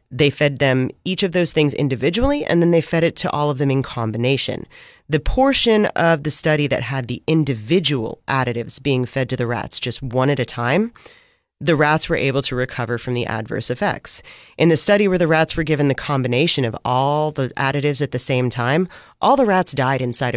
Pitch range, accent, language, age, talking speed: 125-160 Hz, American, English, 30-49, 210 wpm